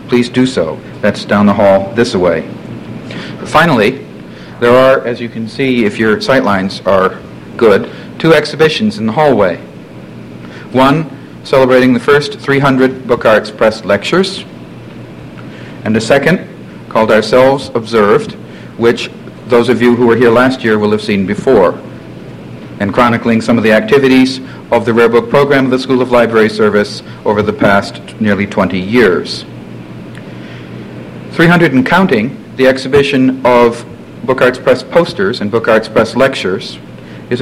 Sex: male